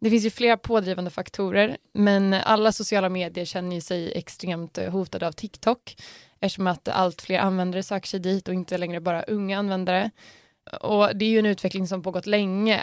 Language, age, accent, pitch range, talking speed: Swedish, 20-39, native, 180-210 Hz, 180 wpm